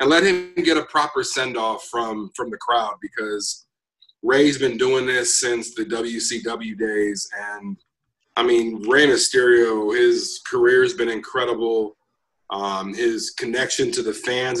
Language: English